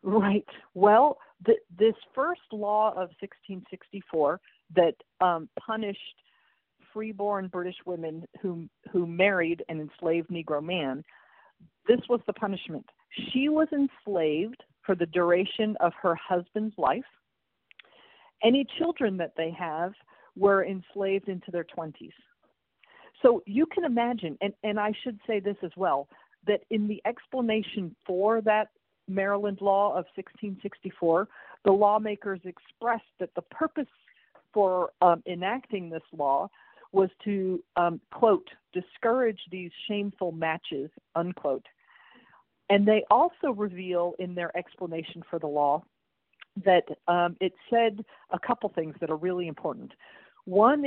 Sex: female